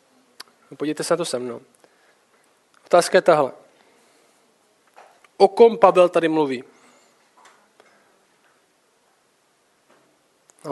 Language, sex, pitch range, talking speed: Czech, male, 170-215 Hz, 90 wpm